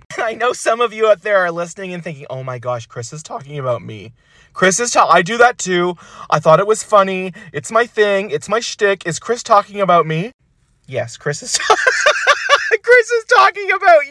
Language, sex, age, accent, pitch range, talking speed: English, male, 30-49, American, 160-260 Hz, 205 wpm